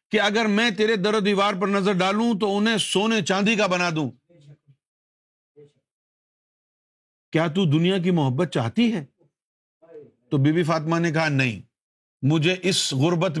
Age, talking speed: 50-69, 150 wpm